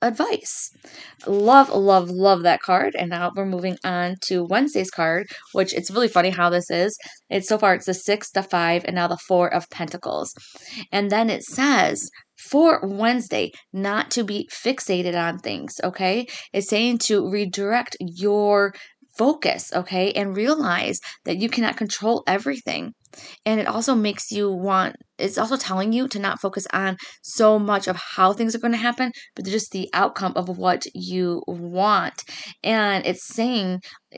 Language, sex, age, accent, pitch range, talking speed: English, female, 20-39, American, 190-240 Hz, 170 wpm